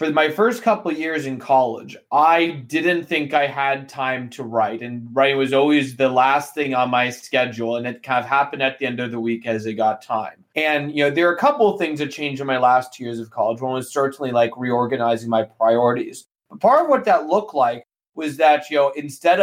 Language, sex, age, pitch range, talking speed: English, male, 20-39, 125-140 Hz, 240 wpm